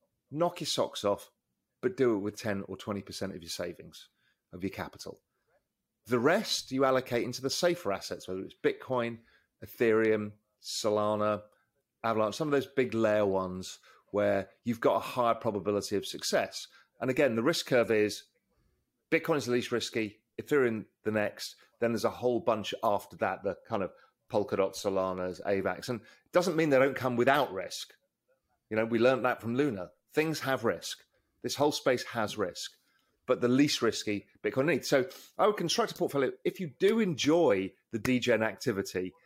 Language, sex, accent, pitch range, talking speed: English, male, British, 105-140 Hz, 175 wpm